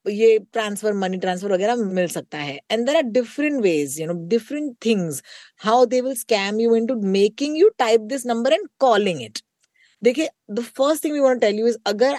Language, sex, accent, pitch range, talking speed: Hindi, female, native, 185-255 Hz, 200 wpm